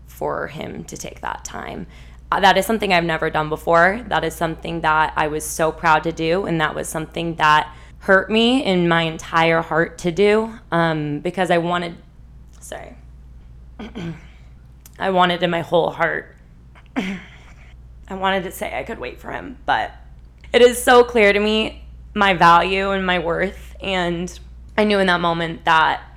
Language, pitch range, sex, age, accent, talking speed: English, 165-225 Hz, female, 20-39, American, 175 wpm